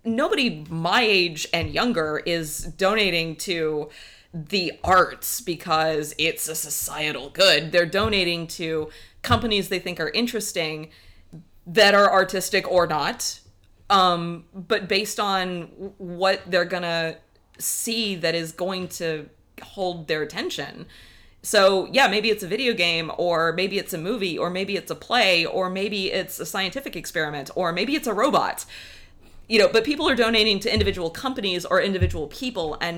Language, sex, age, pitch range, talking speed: English, female, 20-39, 155-195 Hz, 155 wpm